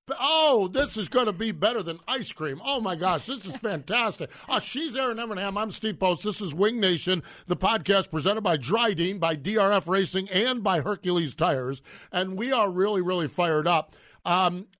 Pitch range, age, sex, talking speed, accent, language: 150-195 Hz, 50-69, male, 190 wpm, American, English